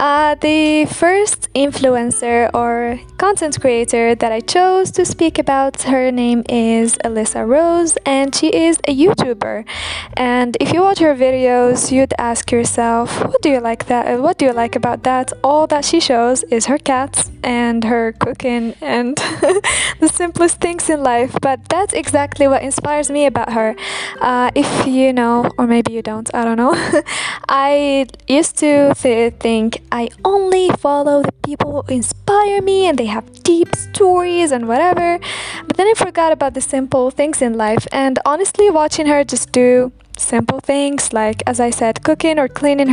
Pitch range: 250-315 Hz